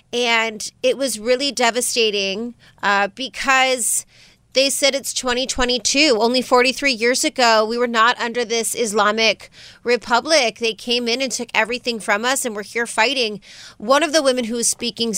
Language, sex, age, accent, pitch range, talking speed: English, female, 30-49, American, 210-245 Hz, 160 wpm